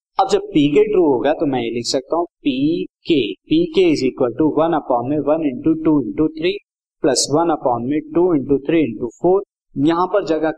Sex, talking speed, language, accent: male, 100 wpm, Hindi, native